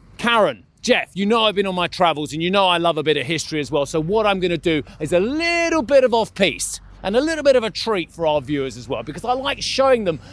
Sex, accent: male, British